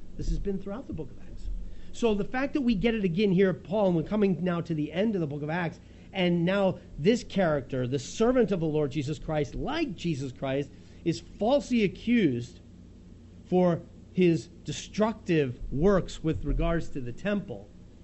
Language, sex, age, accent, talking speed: English, male, 40-59, American, 185 wpm